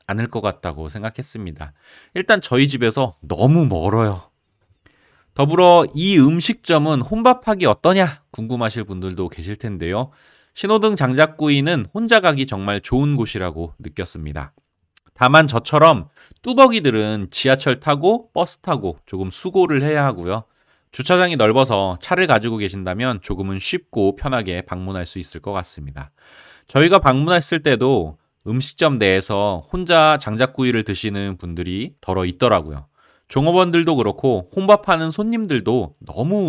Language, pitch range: Korean, 95-150 Hz